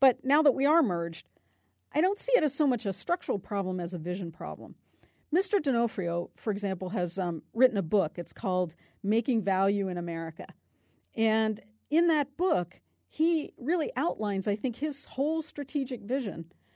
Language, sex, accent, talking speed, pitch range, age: English, female, American, 170 wpm, 190-260 Hz, 50-69